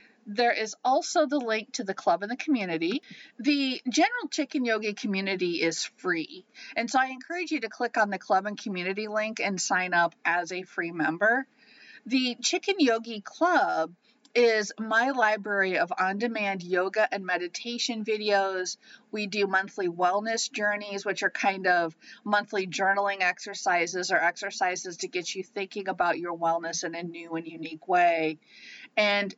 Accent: American